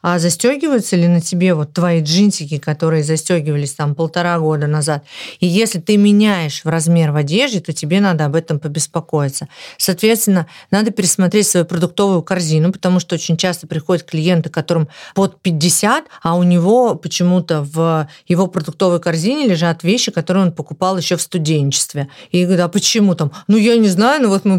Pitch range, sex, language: 165-195 Hz, female, Russian